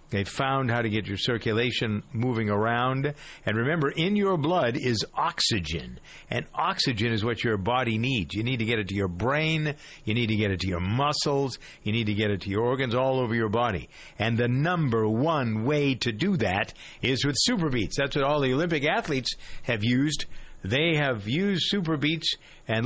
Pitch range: 115-150 Hz